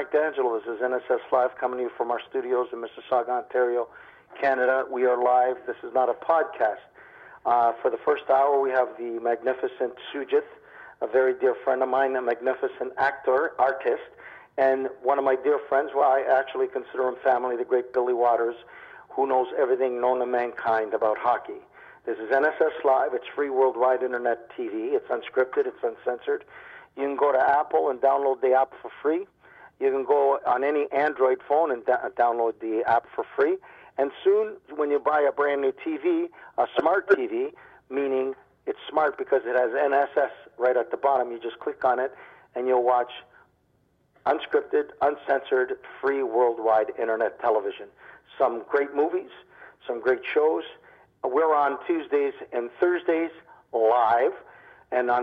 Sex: male